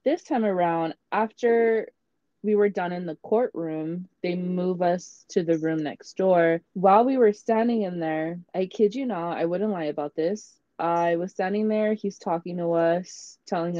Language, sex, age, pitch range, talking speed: English, female, 20-39, 165-220 Hz, 185 wpm